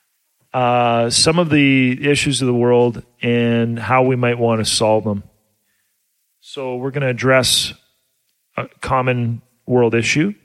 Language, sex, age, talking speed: English, male, 40-59, 145 wpm